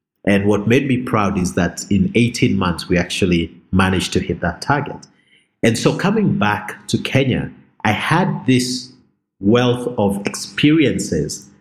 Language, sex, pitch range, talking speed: English, male, 100-125 Hz, 150 wpm